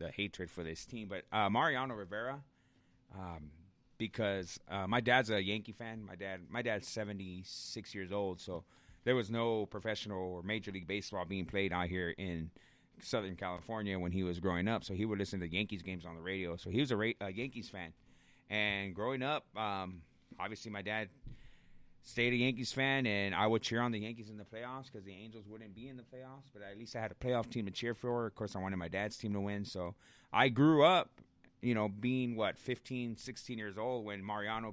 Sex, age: male, 30-49